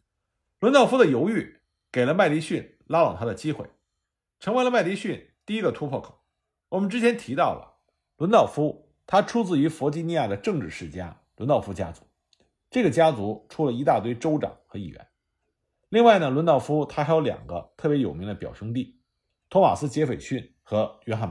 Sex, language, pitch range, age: male, Chinese, 115-180 Hz, 50-69